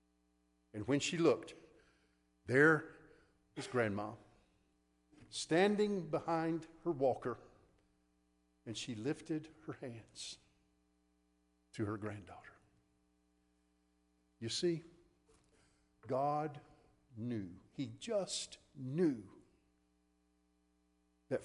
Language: English